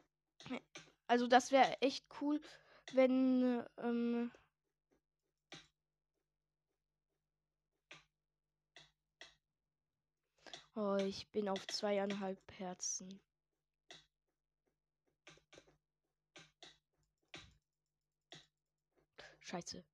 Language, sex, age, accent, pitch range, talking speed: German, female, 20-39, German, 160-265 Hz, 45 wpm